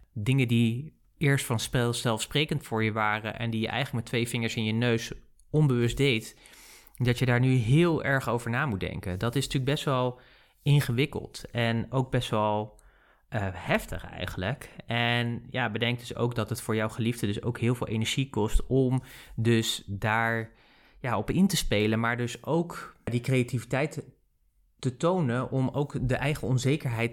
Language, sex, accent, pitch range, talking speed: Dutch, male, Dutch, 110-130 Hz, 175 wpm